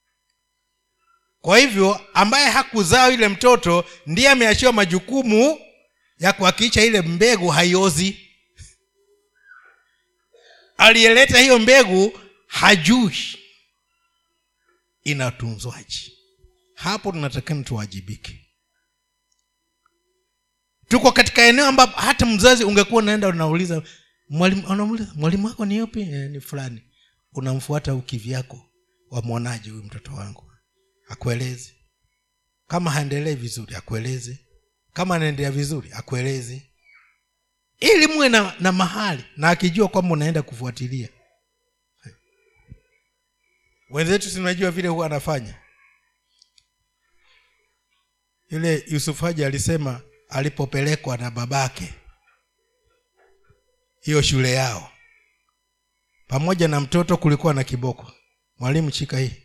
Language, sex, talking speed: Swahili, male, 90 wpm